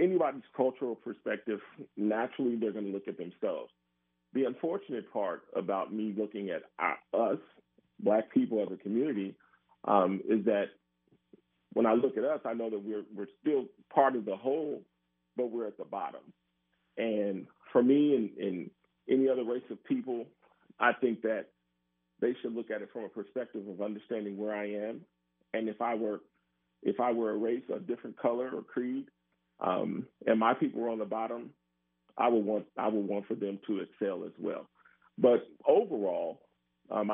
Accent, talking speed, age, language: American, 175 wpm, 40-59, English